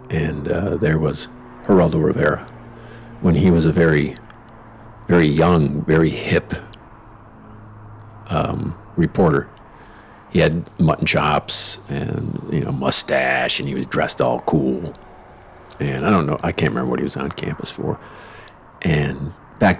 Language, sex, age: English, male, 50-69